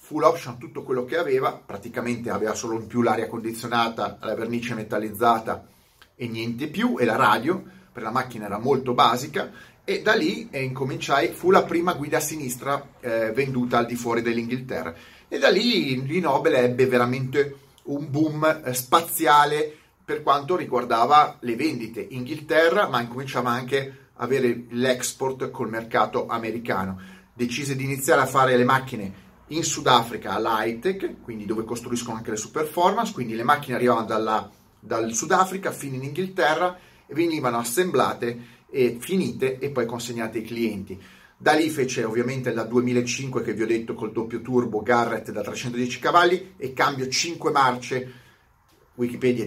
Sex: male